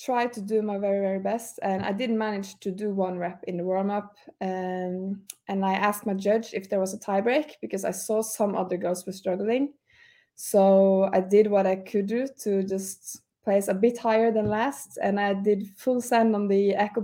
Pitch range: 190-220 Hz